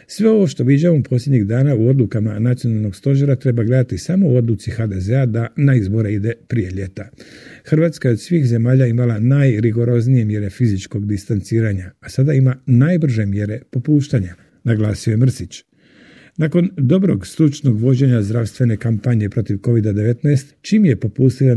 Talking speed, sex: 140 wpm, male